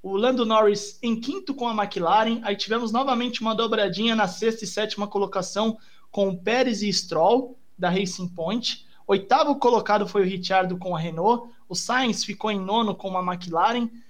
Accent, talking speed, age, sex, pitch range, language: Brazilian, 180 wpm, 20-39, male, 195-240 Hz, Portuguese